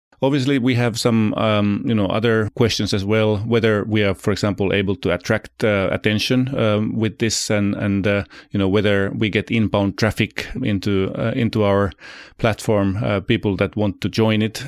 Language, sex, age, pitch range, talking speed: English, male, 30-49, 95-110 Hz, 190 wpm